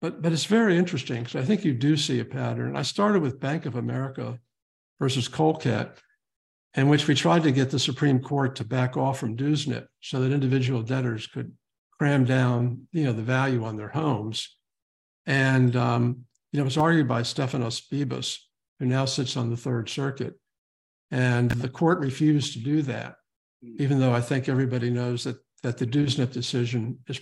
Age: 60-79